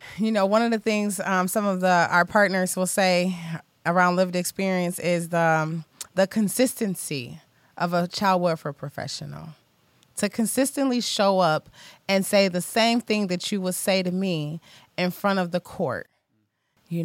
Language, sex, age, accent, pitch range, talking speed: English, female, 30-49, American, 165-215 Hz, 170 wpm